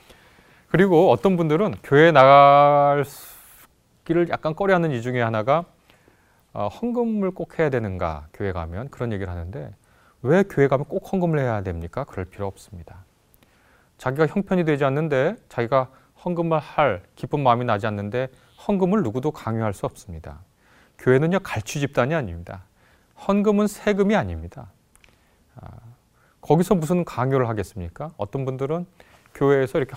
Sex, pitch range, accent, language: male, 100-155 Hz, native, Korean